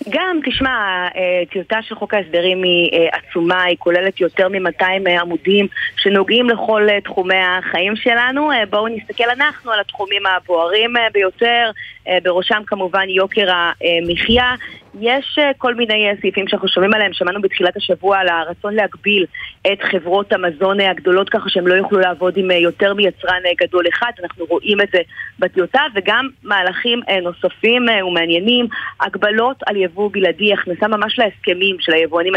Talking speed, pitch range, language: 135 wpm, 185-220 Hz, Hebrew